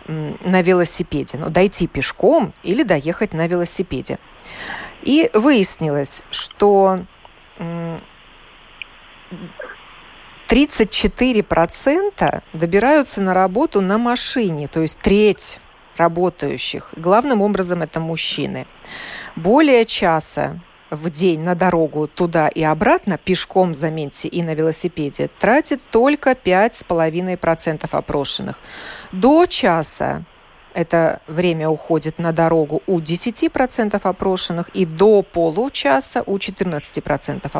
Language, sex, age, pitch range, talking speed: Russian, female, 40-59, 165-215 Hz, 95 wpm